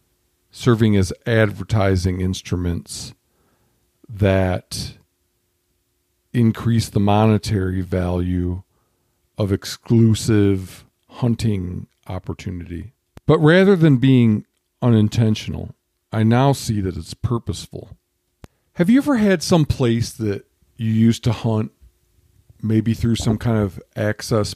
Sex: male